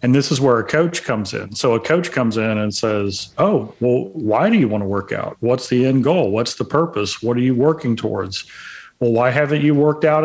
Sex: male